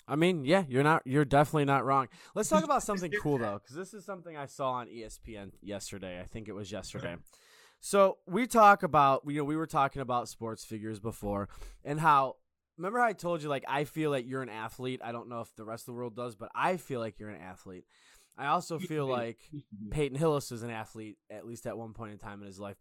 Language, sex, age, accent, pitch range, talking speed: English, male, 20-39, American, 110-150 Hz, 240 wpm